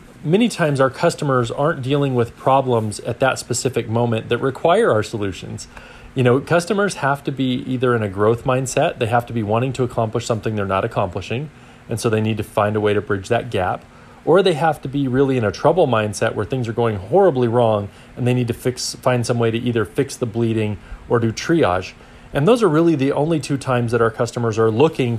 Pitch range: 115-135 Hz